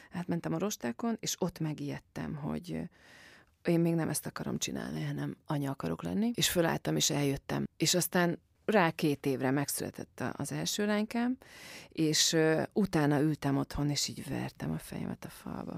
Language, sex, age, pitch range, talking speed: Hungarian, female, 30-49, 135-180 Hz, 160 wpm